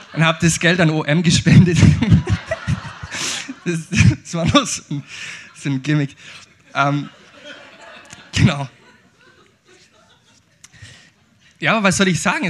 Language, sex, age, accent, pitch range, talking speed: German, male, 20-39, German, 135-160 Hz, 115 wpm